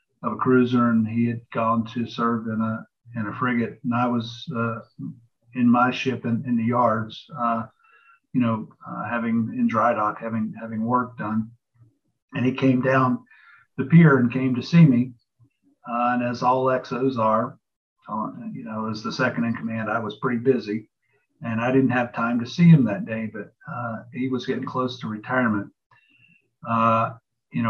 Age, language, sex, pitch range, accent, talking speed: 50-69, English, male, 110-125 Hz, American, 180 wpm